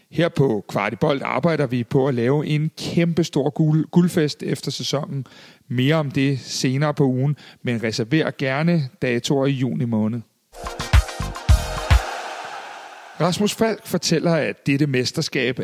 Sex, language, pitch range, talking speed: male, Danish, 135-165 Hz, 125 wpm